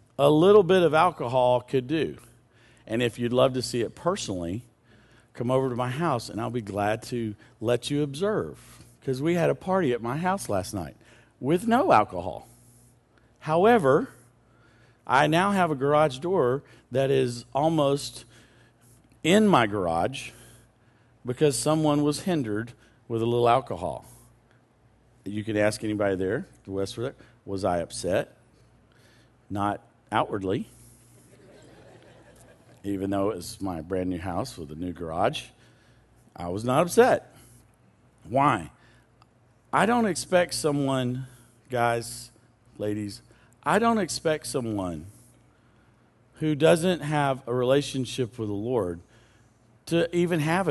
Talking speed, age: 135 wpm, 50-69